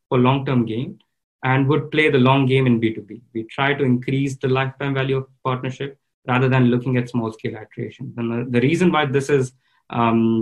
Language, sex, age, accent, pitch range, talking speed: English, male, 20-39, Indian, 120-140 Hz, 200 wpm